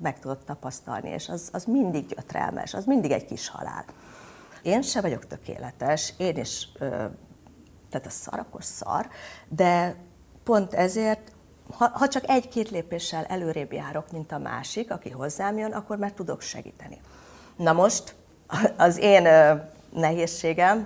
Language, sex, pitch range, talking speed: Hungarian, female, 155-200 Hz, 145 wpm